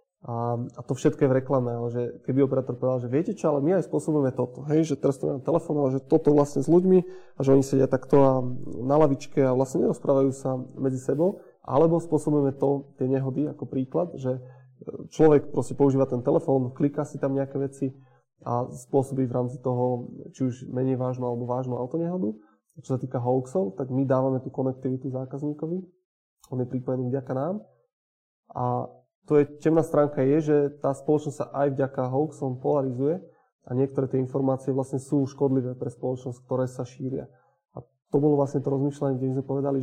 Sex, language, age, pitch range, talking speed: male, Slovak, 20-39, 130-145 Hz, 180 wpm